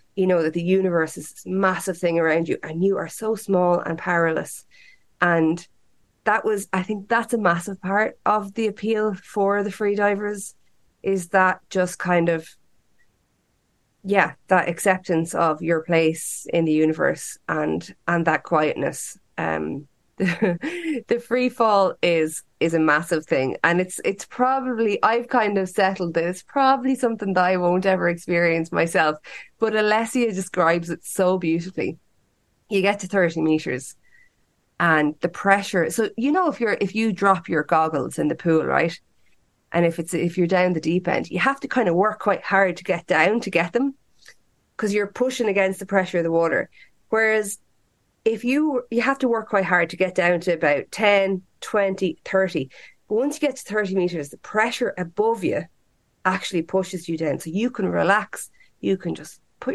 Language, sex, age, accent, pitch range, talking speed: English, female, 20-39, Irish, 170-215 Hz, 180 wpm